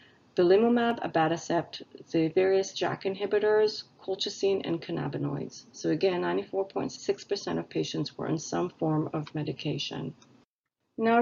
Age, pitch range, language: 40-59, 165-220 Hz, English